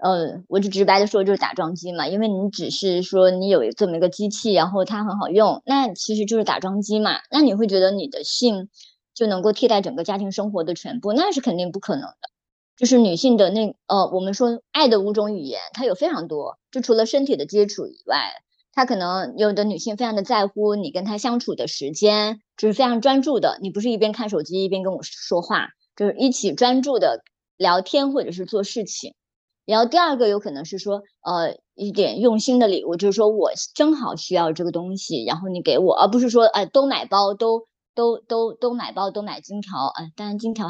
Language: Chinese